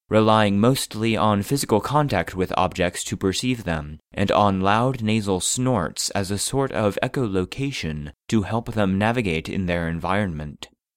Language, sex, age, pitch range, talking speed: English, male, 30-49, 90-120 Hz, 150 wpm